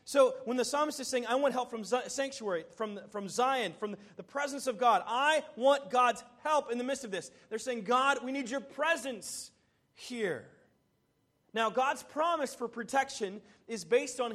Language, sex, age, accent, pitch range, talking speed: English, male, 30-49, American, 220-265 Hz, 185 wpm